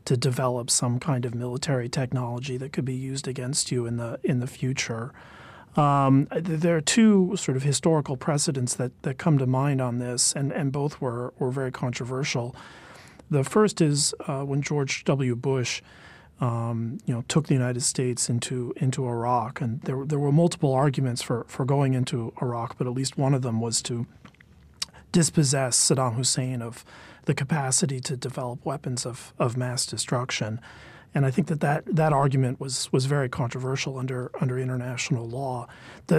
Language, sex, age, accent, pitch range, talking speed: English, male, 40-59, American, 125-150 Hz, 175 wpm